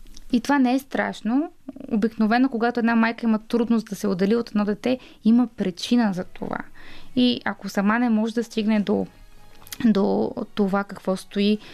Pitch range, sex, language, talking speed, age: 200-245 Hz, female, Bulgarian, 170 wpm, 20-39